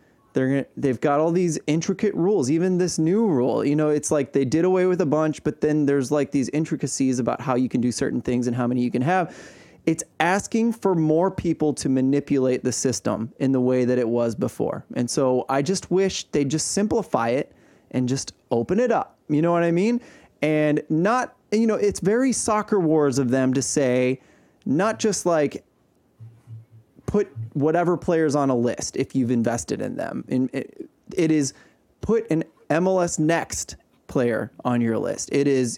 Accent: American